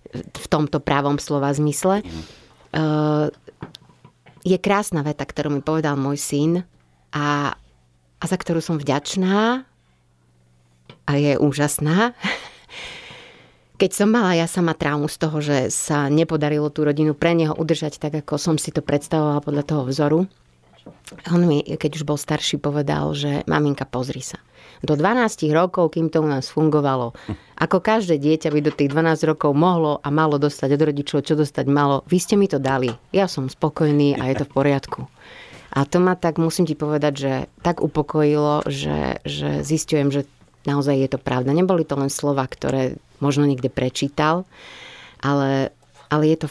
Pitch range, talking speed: 140-160 Hz, 165 wpm